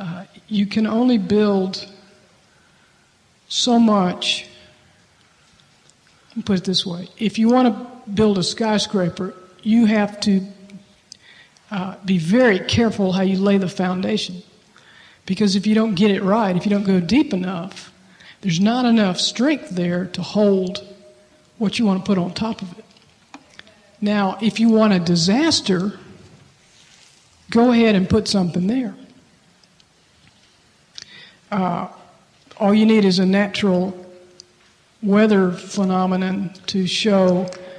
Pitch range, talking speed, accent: 185-210 Hz, 135 wpm, American